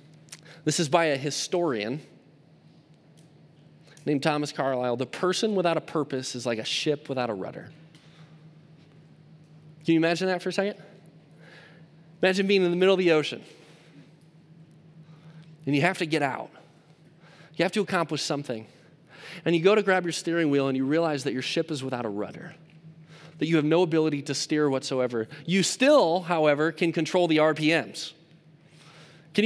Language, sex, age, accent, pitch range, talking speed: English, male, 20-39, American, 155-185 Hz, 165 wpm